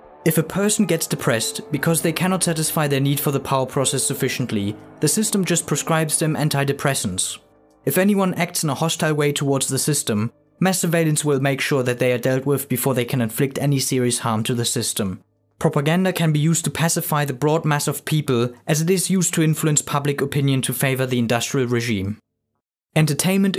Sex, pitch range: male, 125-160 Hz